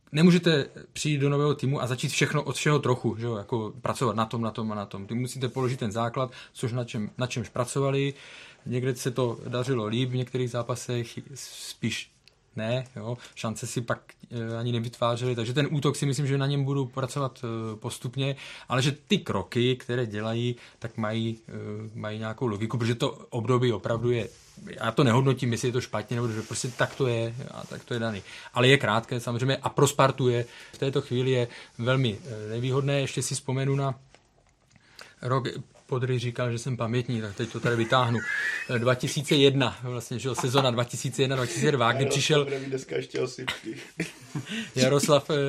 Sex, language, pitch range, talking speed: male, Czech, 115-135 Hz, 170 wpm